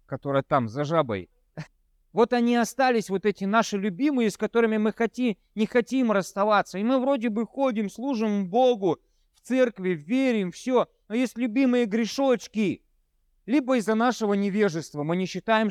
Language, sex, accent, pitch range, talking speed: Russian, male, native, 155-255 Hz, 155 wpm